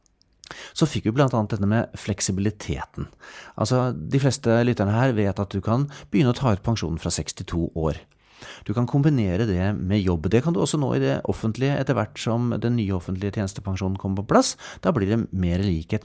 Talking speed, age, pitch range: 200 wpm, 30-49, 95-135 Hz